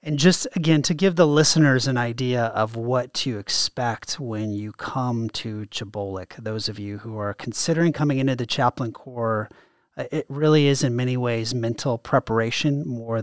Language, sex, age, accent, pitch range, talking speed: English, male, 30-49, American, 110-130 Hz, 170 wpm